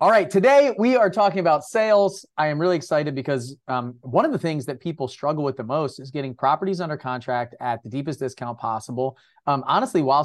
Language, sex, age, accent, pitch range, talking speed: English, male, 30-49, American, 125-145 Hz, 215 wpm